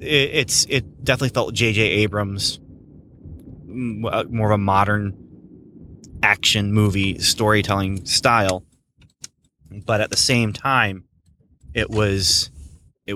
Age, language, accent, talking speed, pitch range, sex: 20-39, English, American, 105 wpm, 90-115 Hz, male